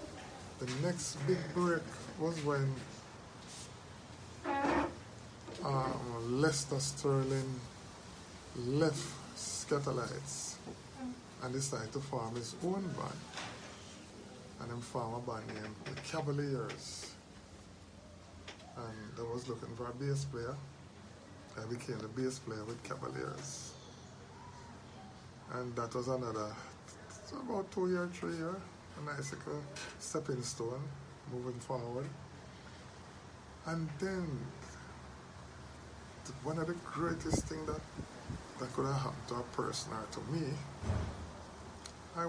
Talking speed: 110 wpm